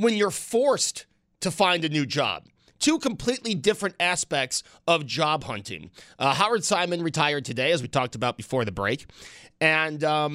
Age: 30-49